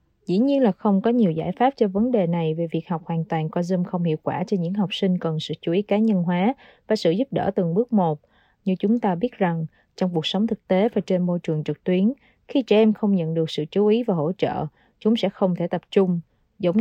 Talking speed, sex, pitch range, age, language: 270 wpm, female, 170-215 Hz, 20-39, Vietnamese